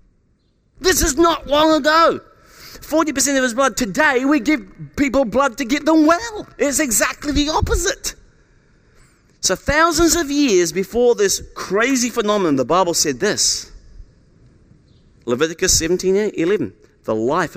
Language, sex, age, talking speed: English, male, 40-59, 135 wpm